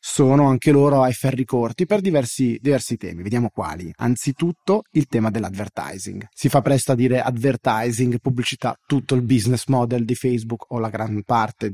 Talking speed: 170 wpm